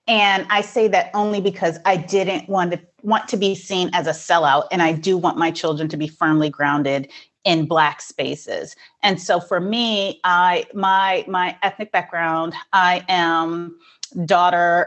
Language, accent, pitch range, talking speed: English, American, 155-185 Hz, 170 wpm